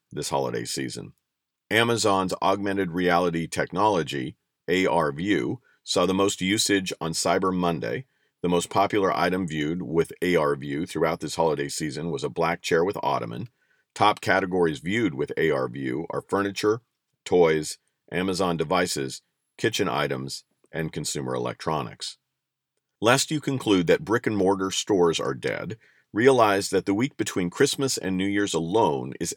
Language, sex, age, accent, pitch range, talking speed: English, male, 50-69, American, 80-100 Hz, 140 wpm